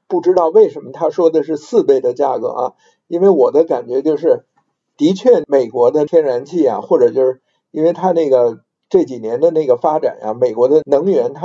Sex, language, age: male, Chinese, 50-69